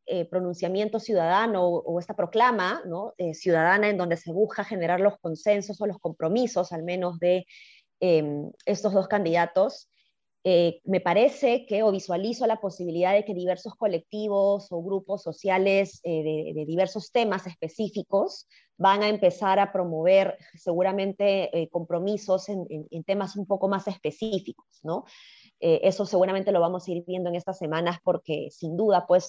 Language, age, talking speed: Spanish, 20-39, 165 wpm